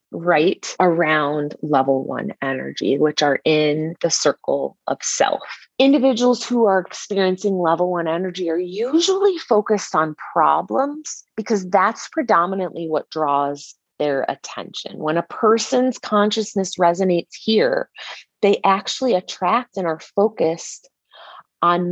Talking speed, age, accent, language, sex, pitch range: 120 wpm, 30-49, American, English, female, 165-240 Hz